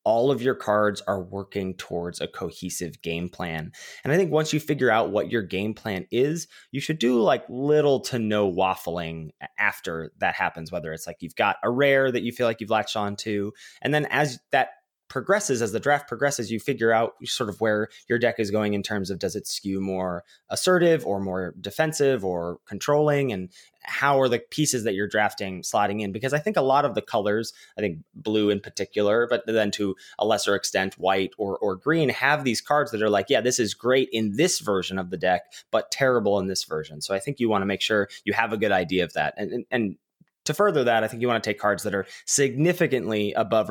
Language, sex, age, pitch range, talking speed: English, male, 20-39, 100-130 Hz, 230 wpm